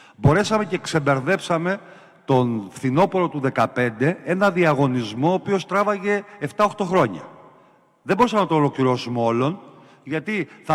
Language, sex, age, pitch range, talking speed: Greek, male, 50-69, 125-180 Hz, 125 wpm